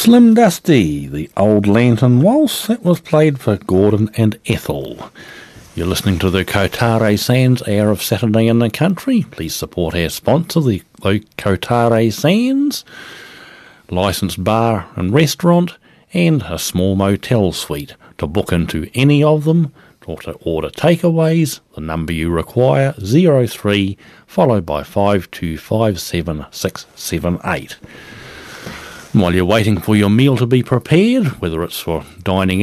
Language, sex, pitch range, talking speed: English, male, 90-145 Hz, 130 wpm